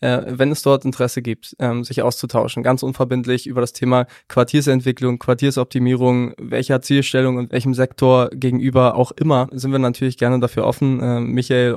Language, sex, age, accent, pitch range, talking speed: German, male, 20-39, German, 120-140 Hz, 150 wpm